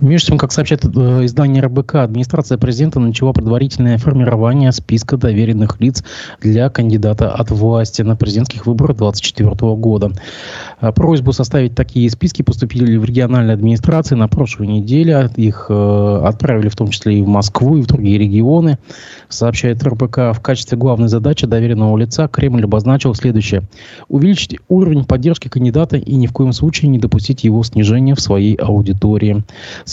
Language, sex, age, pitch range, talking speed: Russian, male, 20-39, 110-140 Hz, 150 wpm